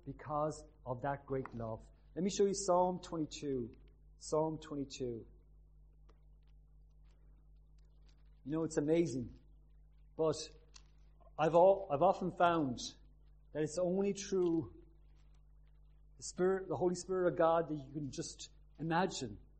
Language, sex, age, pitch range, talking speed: English, male, 40-59, 135-165 Hz, 115 wpm